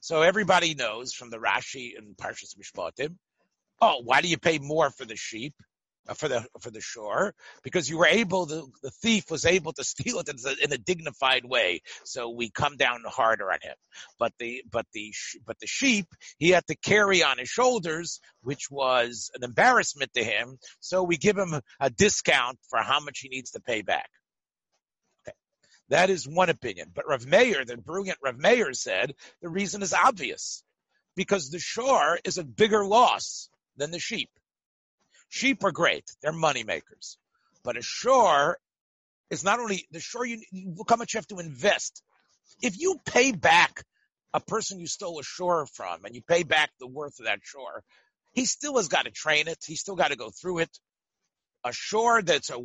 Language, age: English, 50-69